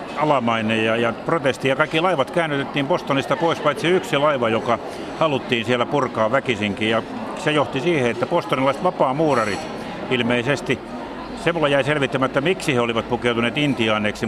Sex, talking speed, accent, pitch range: male, 145 wpm, native, 115-145 Hz